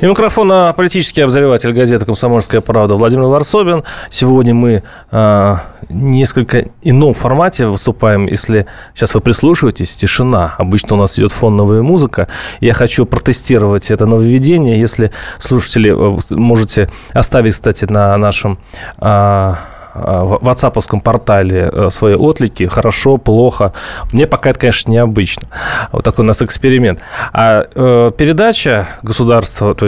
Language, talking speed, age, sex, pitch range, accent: Russian, 130 wpm, 20-39, male, 105-130 Hz, native